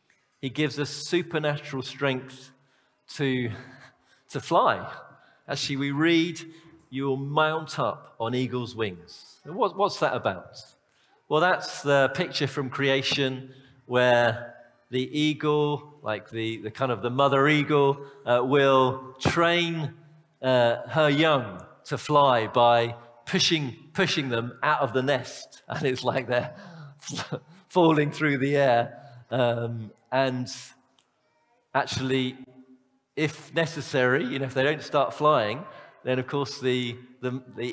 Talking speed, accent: 125 wpm, British